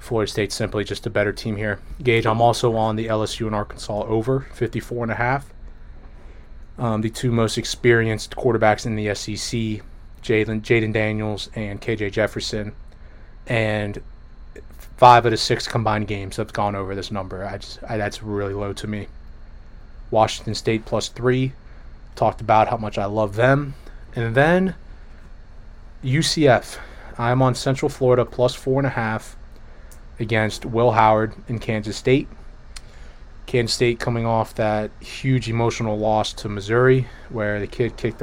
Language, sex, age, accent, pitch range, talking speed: English, male, 20-39, American, 105-120 Hz, 145 wpm